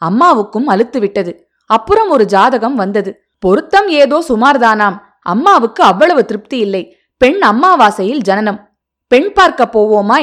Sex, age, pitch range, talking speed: female, 20-39, 205-290 Hz, 105 wpm